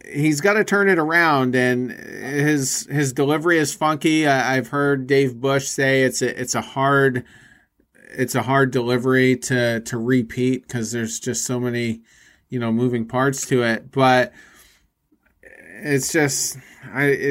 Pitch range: 125-145 Hz